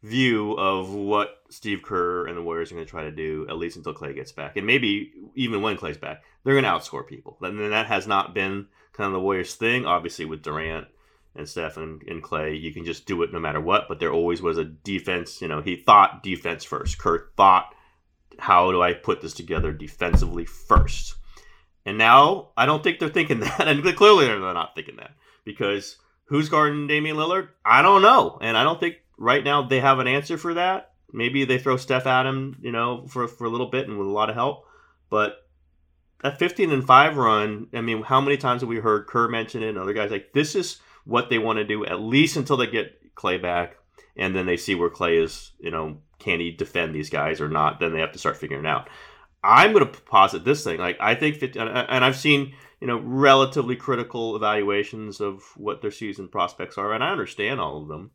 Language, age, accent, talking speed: English, 30-49, American, 230 wpm